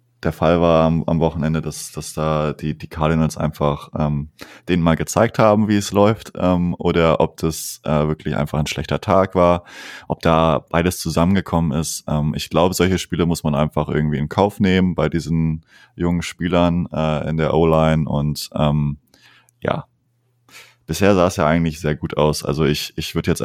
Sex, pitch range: male, 75-85 Hz